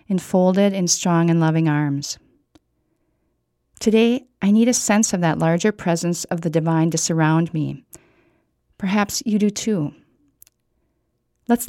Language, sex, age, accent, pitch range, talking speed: English, female, 40-59, American, 170-215 Hz, 135 wpm